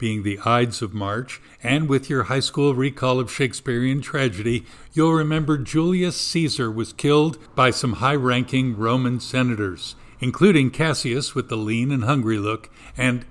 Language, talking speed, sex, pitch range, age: English, 155 wpm, male, 125-160 Hz, 50-69